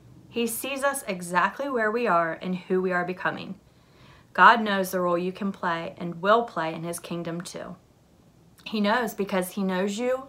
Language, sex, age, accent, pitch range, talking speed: English, female, 30-49, American, 165-205 Hz, 185 wpm